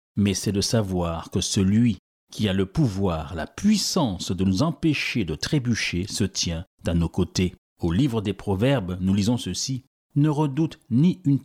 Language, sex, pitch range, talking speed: French, male, 95-130 Hz, 175 wpm